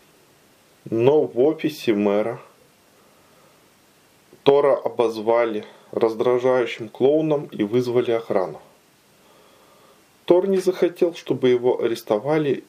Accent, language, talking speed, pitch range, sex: native, Russian, 80 wpm, 115-140 Hz, male